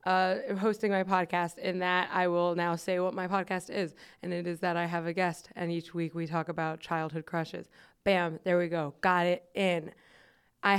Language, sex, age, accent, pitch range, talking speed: English, female, 20-39, American, 185-225 Hz, 210 wpm